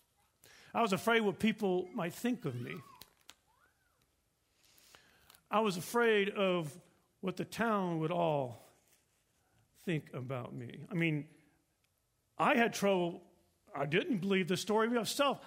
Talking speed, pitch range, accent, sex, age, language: 125 wpm, 155-210 Hz, American, male, 50-69, English